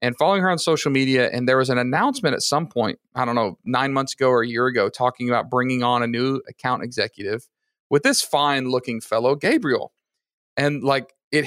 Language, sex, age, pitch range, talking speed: English, male, 40-59, 125-145 Hz, 215 wpm